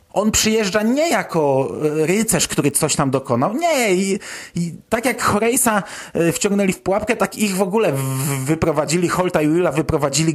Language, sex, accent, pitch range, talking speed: Polish, male, native, 135-180 Hz, 155 wpm